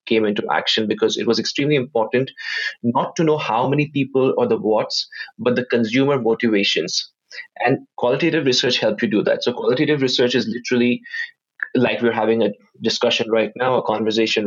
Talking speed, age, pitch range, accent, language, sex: 175 wpm, 20-39, 115-140 Hz, Indian, English, male